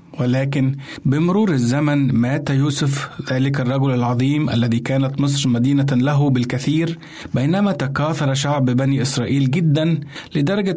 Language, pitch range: Arabic, 125-150 Hz